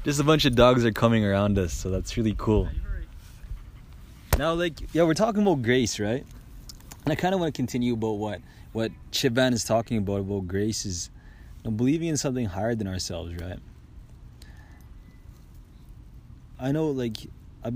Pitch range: 95-120 Hz